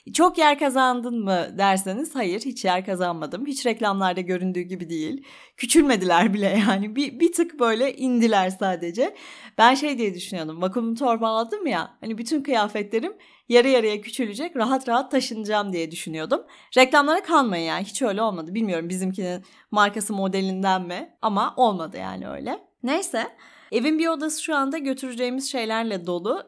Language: Turkish